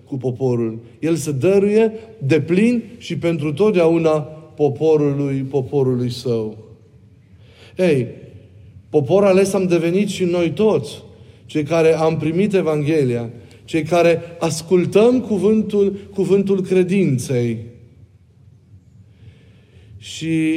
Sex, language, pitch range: male, Romanian, 120-185 Hz